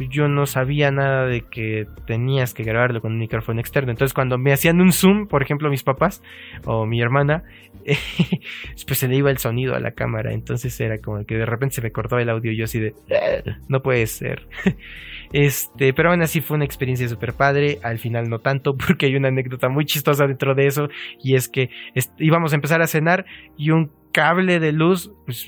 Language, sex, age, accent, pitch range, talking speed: Spanish, male, 20-39, Mexican, 115-155 Hz, 210 wpm